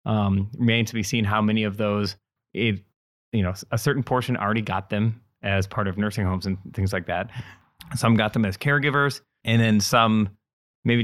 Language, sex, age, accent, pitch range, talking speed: English, male, 20-39, American, 100-120 Hz, 195 wpm